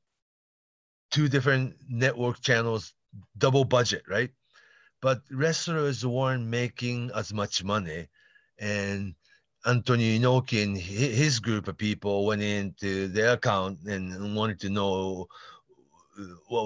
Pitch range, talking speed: 100-125 Hz, 110 wpm